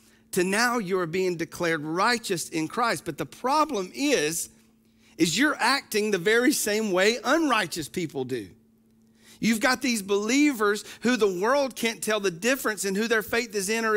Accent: American